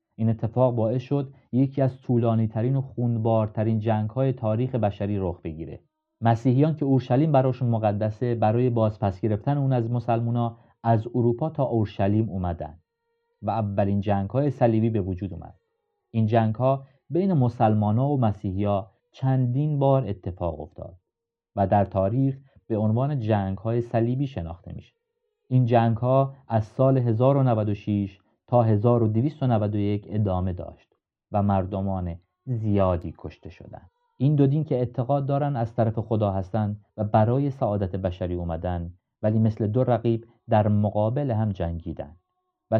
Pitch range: 105-130 Hz